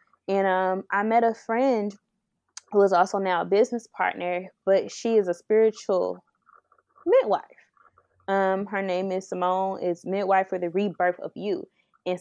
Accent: American